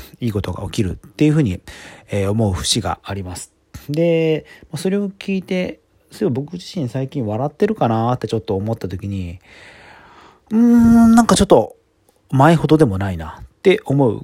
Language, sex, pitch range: Japanese, male, 100-140 Hz